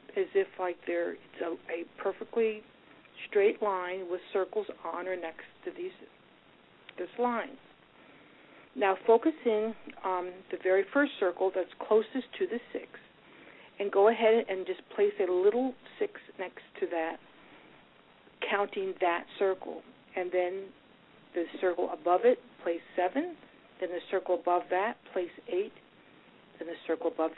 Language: English